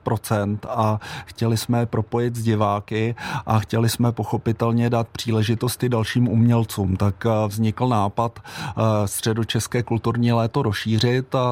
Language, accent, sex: Czech, native, male